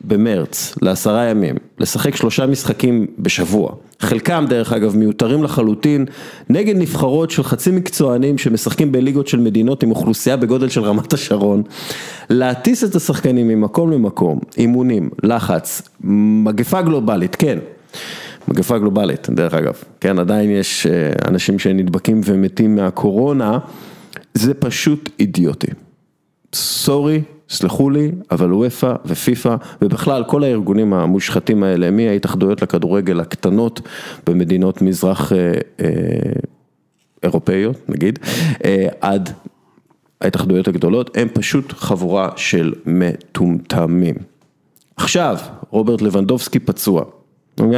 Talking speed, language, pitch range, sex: 105 wpm, Hebrew, 95-135 Hz, male